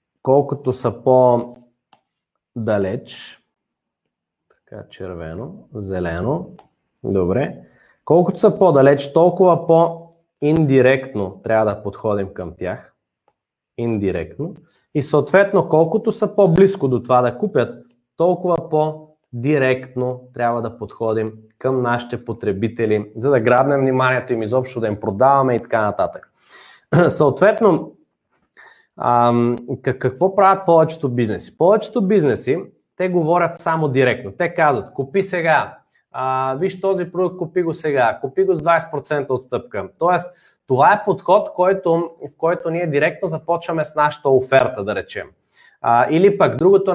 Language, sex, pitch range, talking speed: Bulgarian, male, 120-165 Hz, 120 wpm